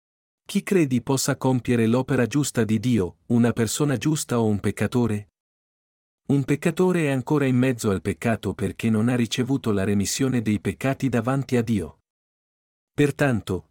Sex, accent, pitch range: male, native, 105-135 Hz